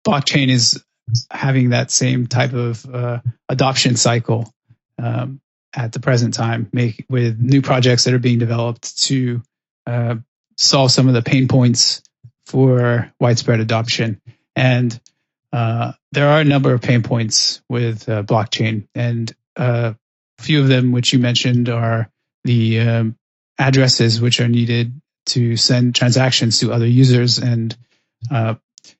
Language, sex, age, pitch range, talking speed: English, male, 30-49, 120-135 Hz, 145 wpm